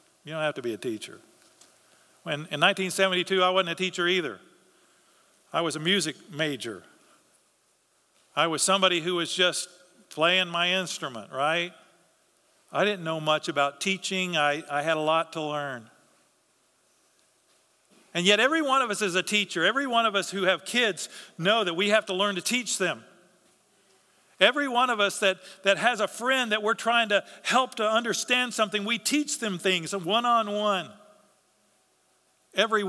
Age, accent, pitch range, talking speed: 50-69, American, 170-215 Hz, 165 wpm